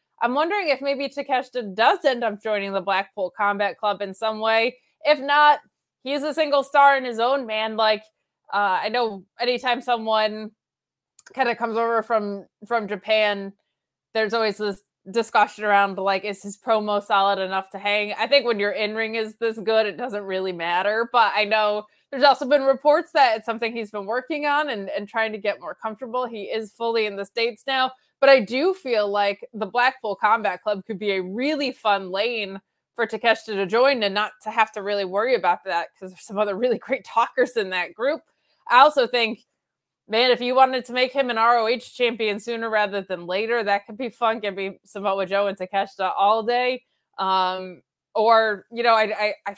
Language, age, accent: English, 20-39, American